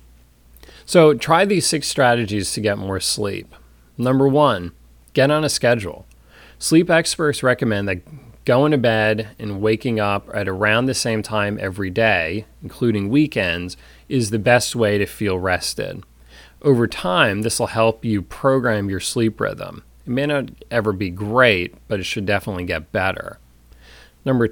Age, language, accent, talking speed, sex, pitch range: 30-49, English, American, 155 wpm, male, 90-125 Hz